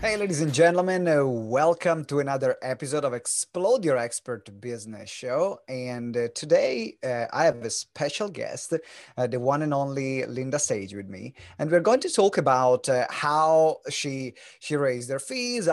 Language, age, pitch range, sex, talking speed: English, 30-49, 120-160 Hz, male, 175 wpm